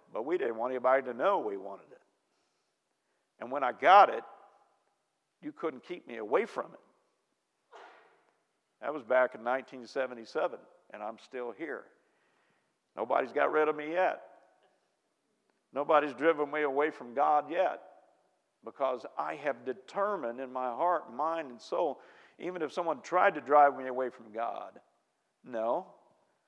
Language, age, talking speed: English, 50-69, 145 wpm